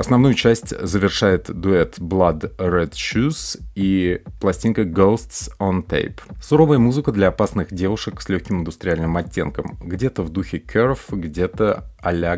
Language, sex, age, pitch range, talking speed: Russian, male, 30-49, 85-110 Hz, 130 wpm